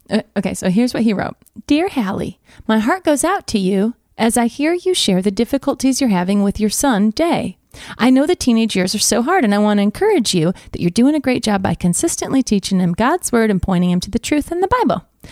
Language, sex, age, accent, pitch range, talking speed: English, female, 30-49, American, 200-290 Hz, 245 wpm